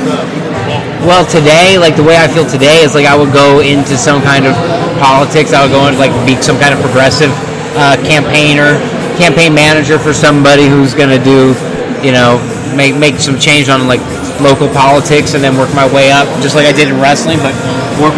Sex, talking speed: male, 205 wpm